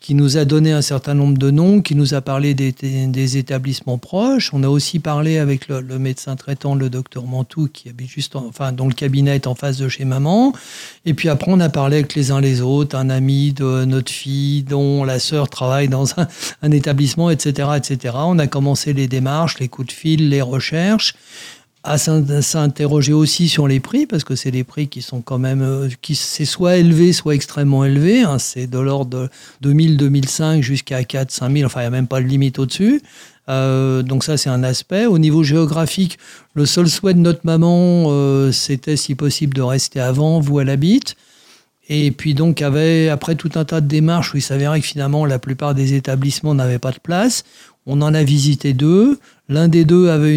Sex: male